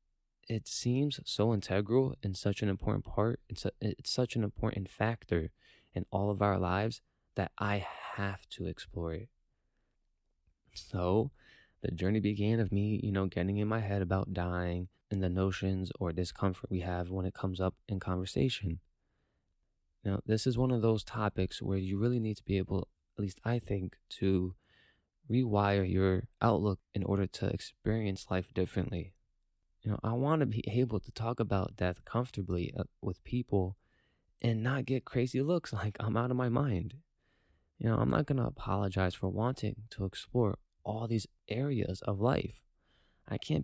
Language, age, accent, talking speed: English, 20-39, American, 170 wpm